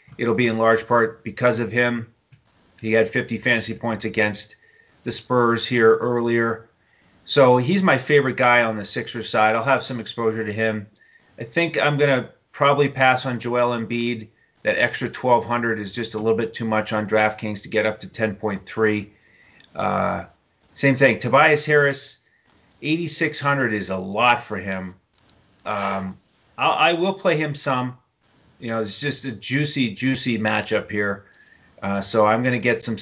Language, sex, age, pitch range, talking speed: English, male, 30-49, 110-130 Hz, 165 wpm